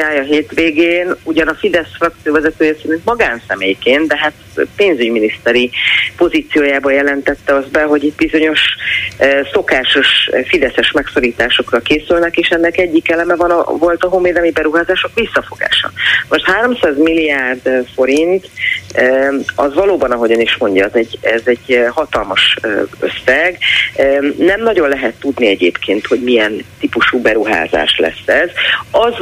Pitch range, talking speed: 130-170 Hz, 135 wpm